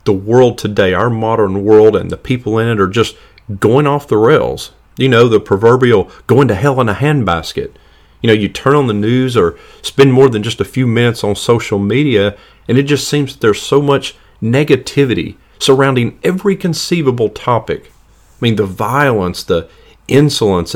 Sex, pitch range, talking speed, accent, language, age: male, 105-145 Hz, 185 wpm, American, English, 40-59